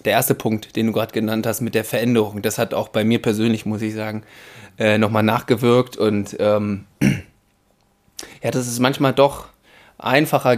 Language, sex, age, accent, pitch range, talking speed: German, male, 20-39, German, 120-150 Hz, 170 wpm